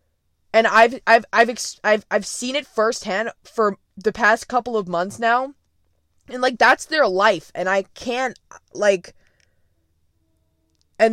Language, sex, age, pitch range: English, female, 20-39, 170-230 Hz